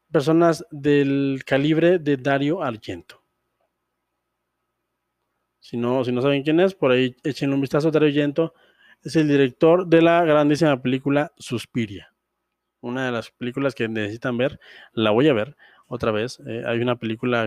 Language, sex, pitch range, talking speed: Spanish, male, 120-150 Hz, 160 wpm